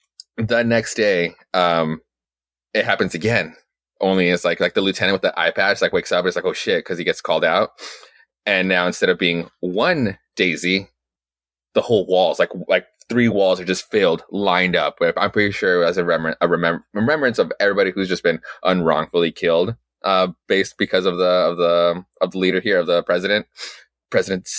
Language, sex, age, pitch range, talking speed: English, male, 20-39, 85-115 Hz, 195 wpm